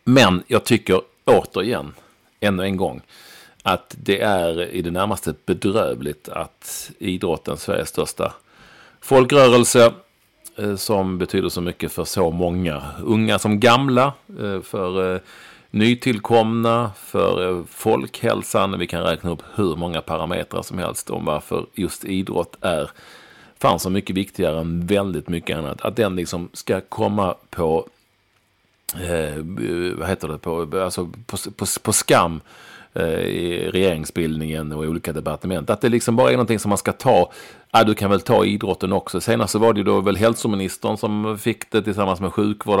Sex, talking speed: male, 155 wpm